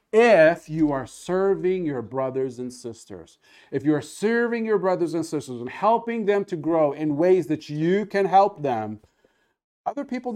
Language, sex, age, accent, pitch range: Japanese, male, 40-59, American, 125-175 Hz